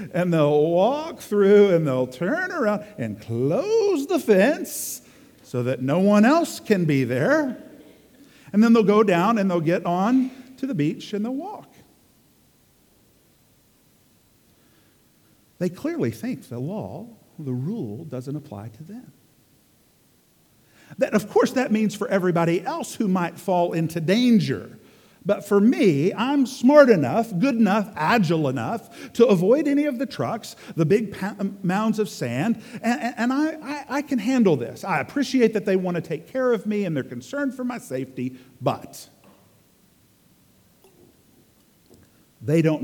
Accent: American